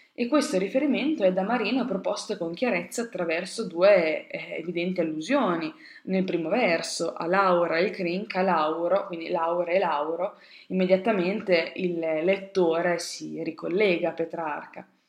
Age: 20-39